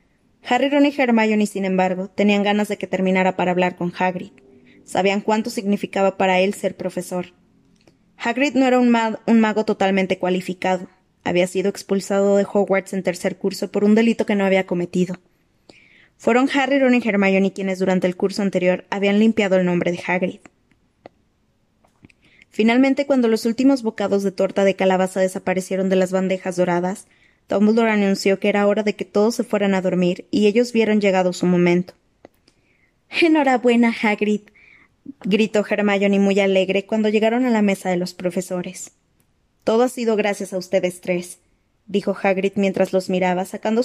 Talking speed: 165 wpm